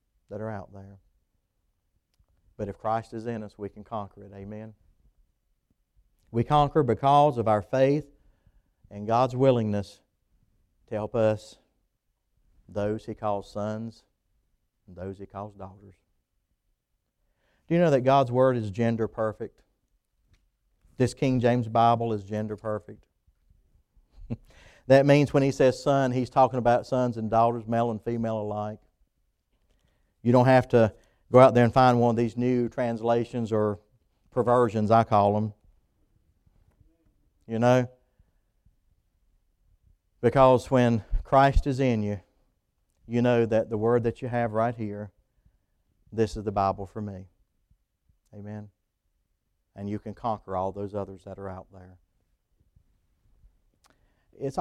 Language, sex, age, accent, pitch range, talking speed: English, male, 40-59, American, 100-120 Hz, 135 wpm